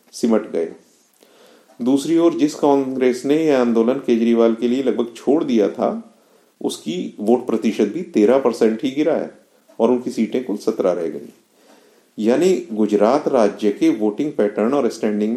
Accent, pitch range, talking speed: native, 110-140 Hz, 155 wpm